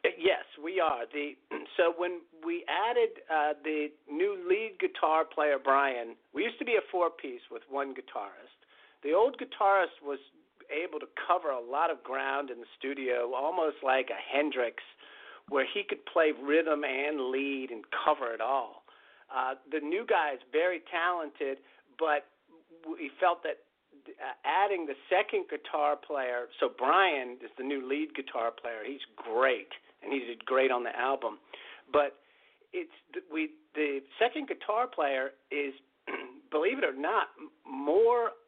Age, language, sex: 50-69, English, male